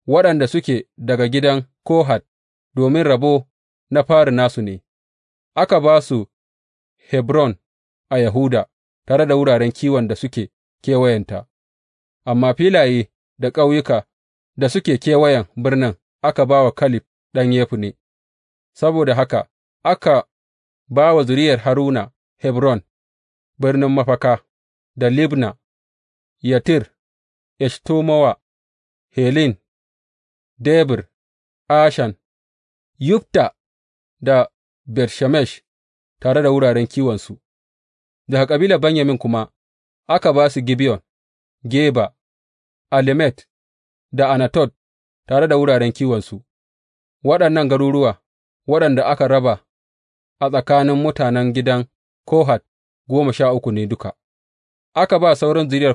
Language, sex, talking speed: English, male, 90 wpm